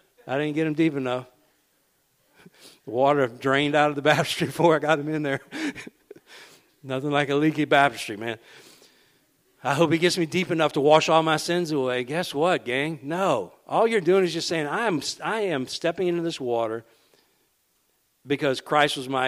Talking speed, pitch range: 185 wpm, 115-150 Hz